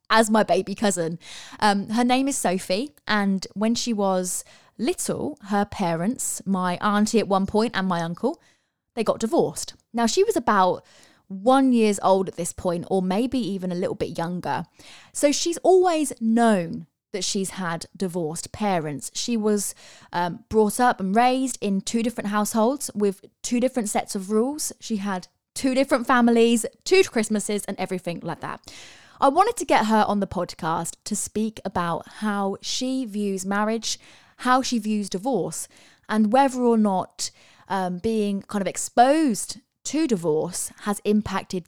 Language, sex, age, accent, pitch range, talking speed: English, female, 20-39, British, 185-240 Hz, 165 wpm